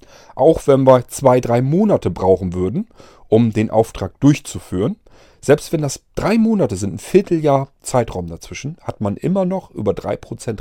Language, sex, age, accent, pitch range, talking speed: German, male, 40-59, German, 100-140 Hz, 165 wpm